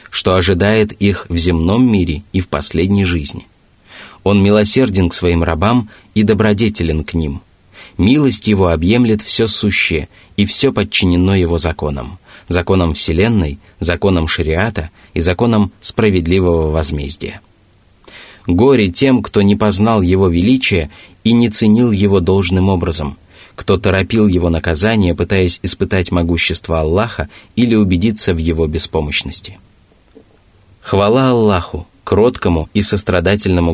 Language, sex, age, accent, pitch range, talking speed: Russian, male, 20-39, native, 85-105 Hz, 120 wpm